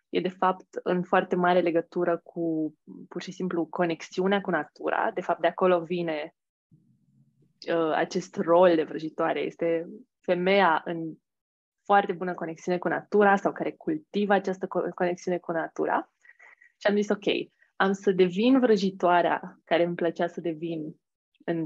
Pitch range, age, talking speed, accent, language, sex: 175-215 Hz, 20-39, 145 wpm, native, Romanian, female